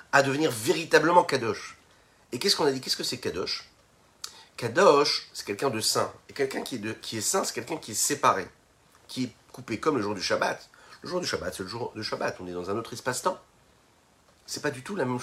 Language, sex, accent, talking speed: French, male, French, 235 wpm